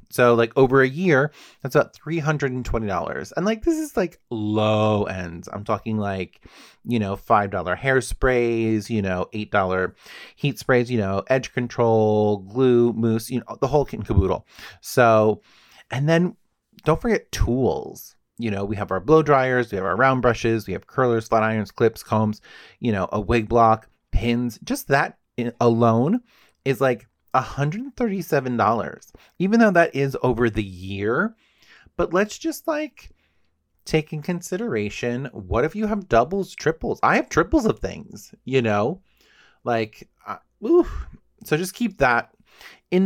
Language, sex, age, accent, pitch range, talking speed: English, male, 30-49, American, 105-140 Hz, 155 wpm